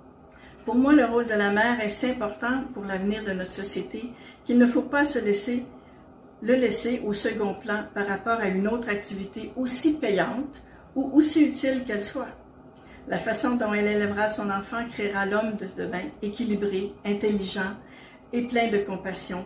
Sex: female